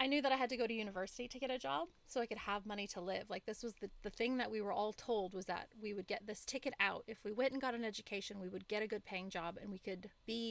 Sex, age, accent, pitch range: female, 20-39, American, 195-245 Hz